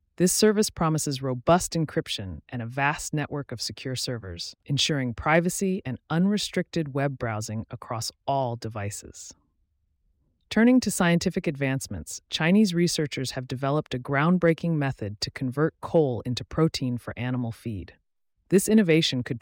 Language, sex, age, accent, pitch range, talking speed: English, female, 30-49, American, 120-165 Hz, 135 wpm